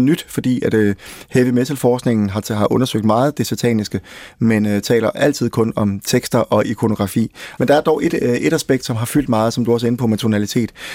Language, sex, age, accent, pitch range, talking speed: Danish, male, 30-49, native, 110-130 Hz, 230 wpm